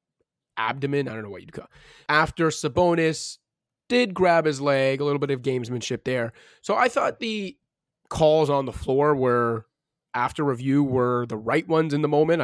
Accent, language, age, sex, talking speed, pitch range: American, English, 20-39, male, 180 wpm, 135-170 Hz